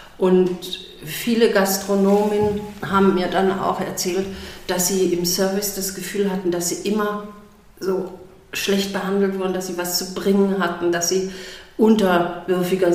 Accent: German